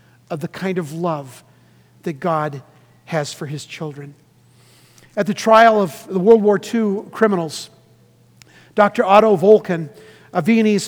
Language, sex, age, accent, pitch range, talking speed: English, male, 50-69, American, 150-205 Hz, 140 wpm